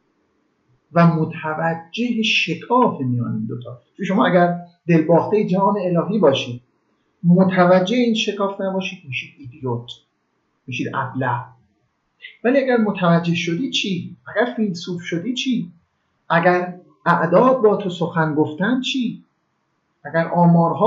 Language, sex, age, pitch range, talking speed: Persian, male, 50-69, 150-205 Hz, 110 wpm